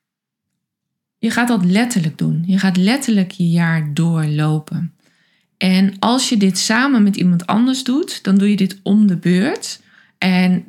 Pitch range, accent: 180-230 Hz, Dutch